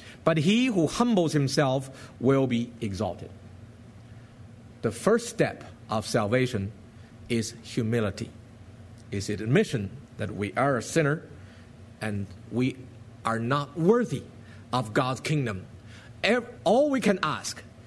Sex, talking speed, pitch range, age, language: male, 120 wpm, 115-175 Hz, 50-69, English